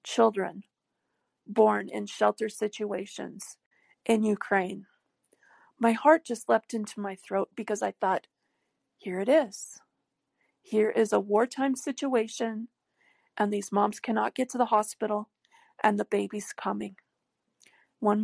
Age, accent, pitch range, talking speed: 40-59, American, 205-255 Hz, 125 wpm